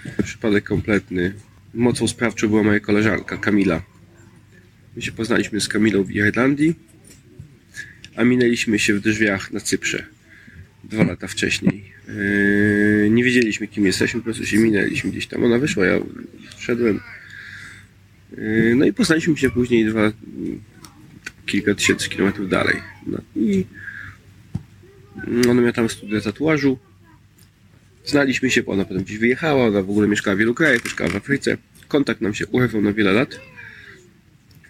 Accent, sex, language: native, male, Polish